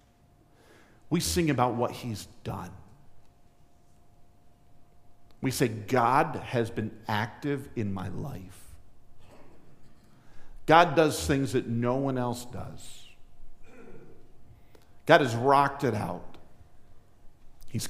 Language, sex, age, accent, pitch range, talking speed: English, male, 50-69, American, 115-155 Hz, 95 wpm